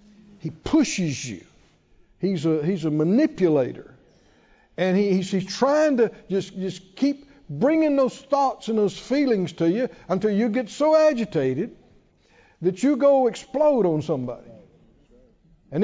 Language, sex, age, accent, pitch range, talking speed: English, male, 50-69, American, 175-260 Hz, 135 wpm